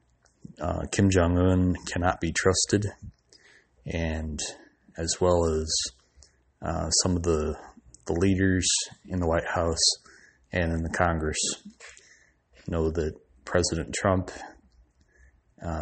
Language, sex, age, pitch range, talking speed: English, male, 30-49, 70-90 Hz, 110 wpm